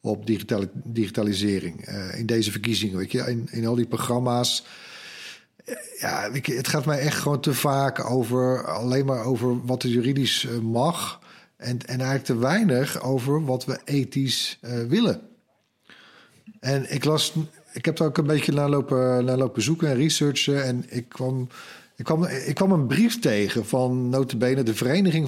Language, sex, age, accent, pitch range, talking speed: Dutch, male, 50-69, Dutch, 120-155 Hz, 155 wpm